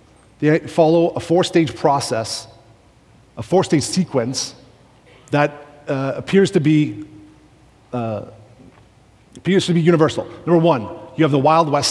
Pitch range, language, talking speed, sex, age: 125-165 Hz, English, 125 wpm, male, 30-49